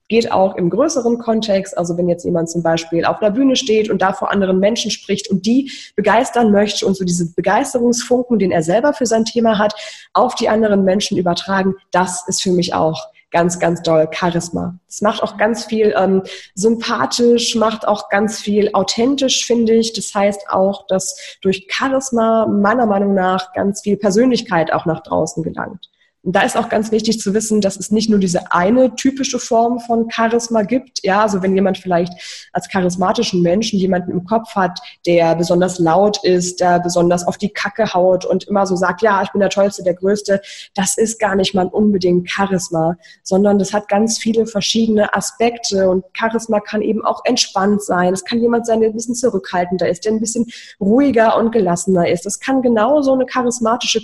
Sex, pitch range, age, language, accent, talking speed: female, 185-225 Hz, 20-39, German, German, 195 wpm